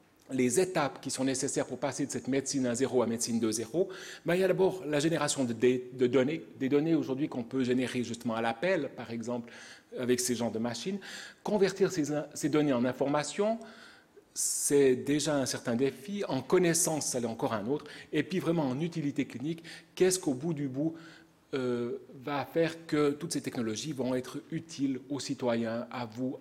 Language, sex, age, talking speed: French, male, 40-59, 195 wpm